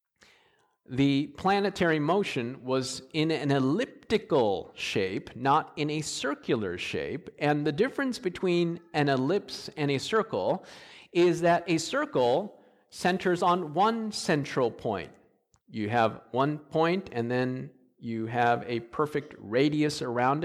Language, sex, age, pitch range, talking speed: English, male, 50-69, 130-180 Hz, 125 wpm